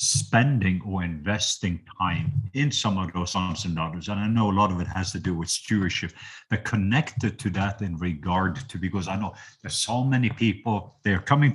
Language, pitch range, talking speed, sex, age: English, 95-125 Hz, 205 wpm, male, 50-69